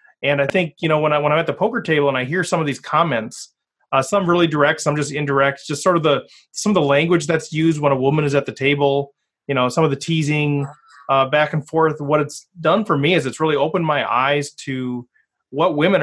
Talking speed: 255 wpm